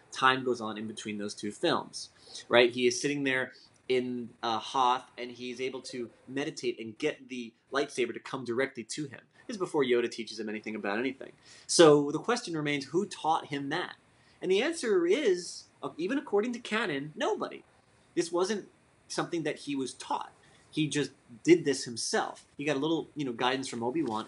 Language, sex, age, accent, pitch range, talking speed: English, male, 30-49, American, 120-165 Hz, 190 wpm